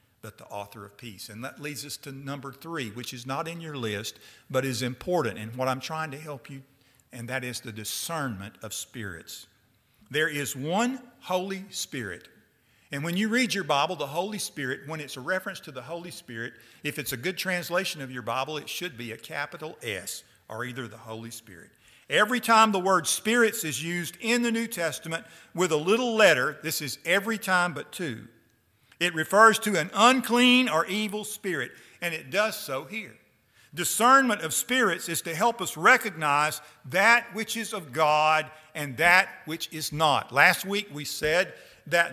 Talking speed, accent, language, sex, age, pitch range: 190 wpm, American, English, male, 50-69, 135-205 Hz